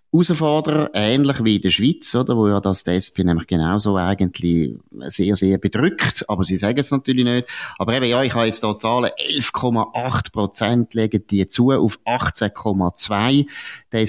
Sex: male